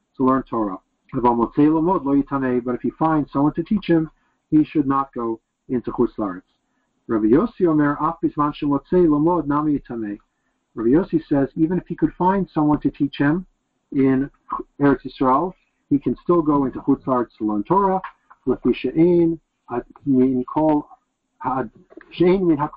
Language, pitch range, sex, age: English, 130-165 Hz, male, 50-69